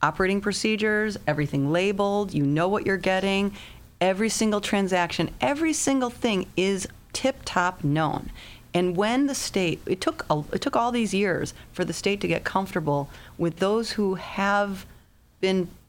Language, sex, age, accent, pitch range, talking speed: English, female, 30-49, American, 150-195 Hz, 155 wpm